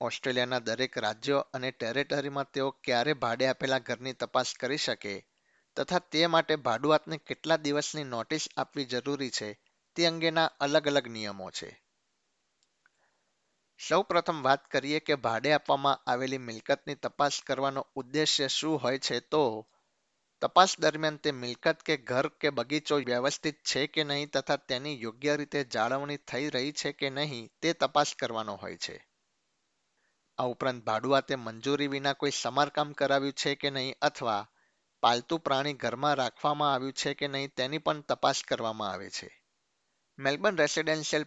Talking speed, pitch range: 95 wpm, 125-150 Hz